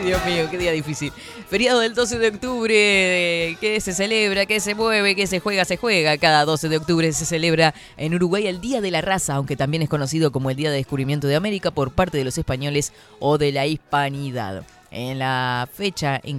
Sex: female